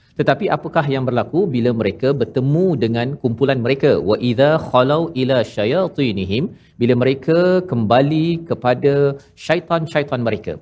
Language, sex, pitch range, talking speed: Malayalam, male, 115-150 Hz, 120 wpm